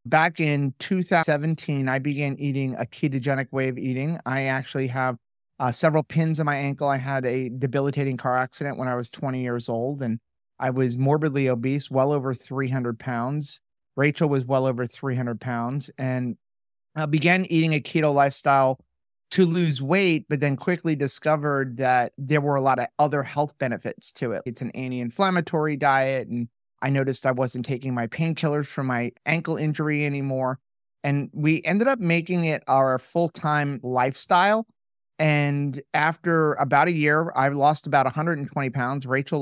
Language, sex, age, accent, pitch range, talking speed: English, male, 30-49, American, 130-155 Hz, 165 wpm